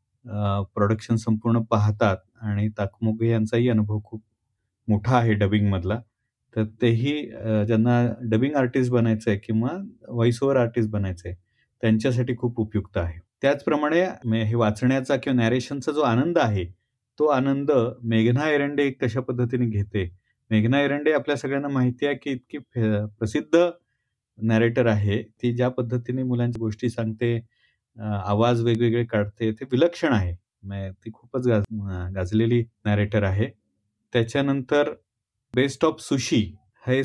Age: 30-49